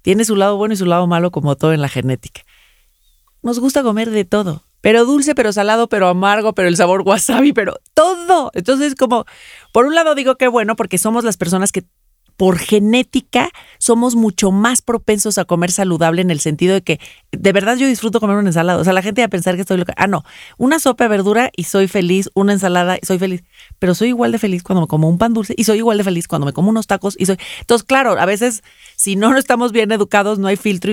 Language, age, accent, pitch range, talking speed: Spanish, 40-59, Mexican, 180-235 Hz, 240 wpm